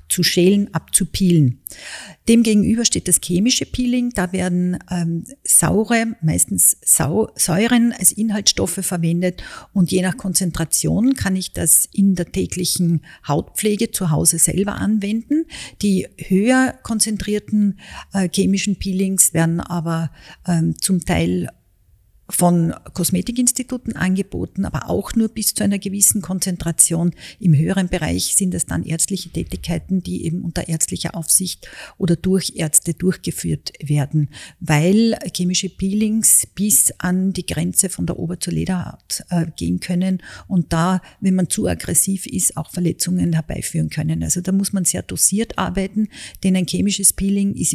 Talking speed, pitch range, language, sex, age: 140 wpm, 170-200 Hz, German, female, 50-69